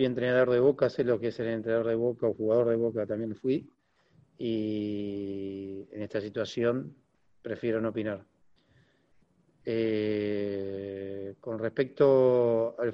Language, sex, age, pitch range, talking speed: English, male, 40-59, 110-130 Hz, 130 wpm